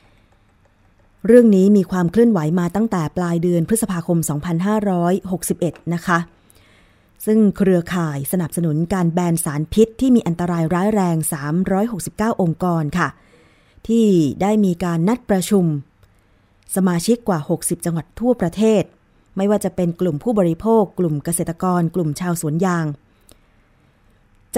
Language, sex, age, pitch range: Thai, female, 20-39, 155-205 Hz